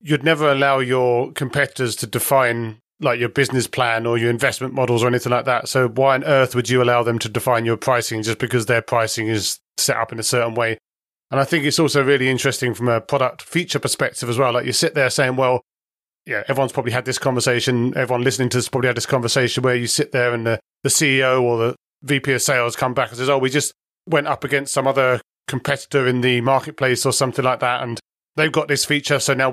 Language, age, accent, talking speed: English, 30-49, British, 235 wpm